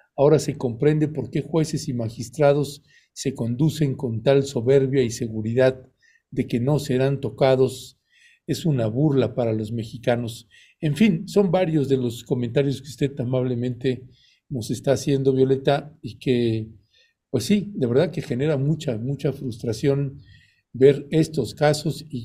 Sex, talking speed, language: male, 150 wpm, Spanish